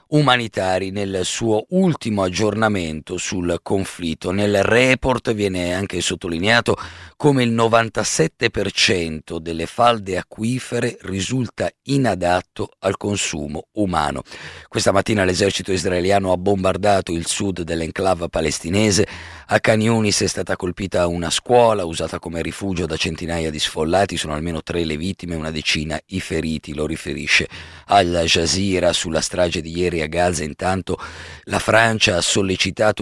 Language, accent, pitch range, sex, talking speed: Italian, native, 85-105 Hz, male, 130 wpm